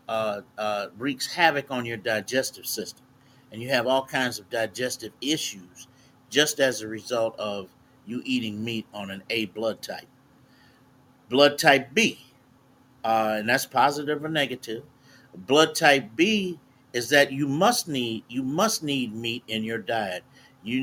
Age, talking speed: 50-69, 155 wpm